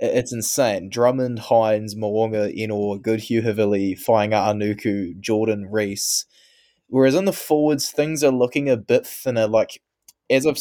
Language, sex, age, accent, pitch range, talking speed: English, male, 20-39, Australian, 105-125 Hz, 140 wpm